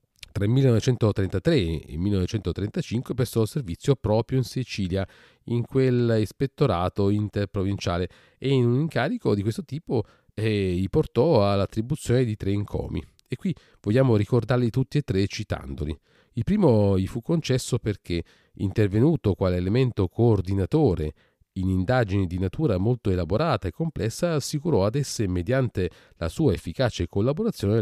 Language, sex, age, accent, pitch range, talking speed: Italian, male, 40-59, native, 95-130 Hz, 130 wpm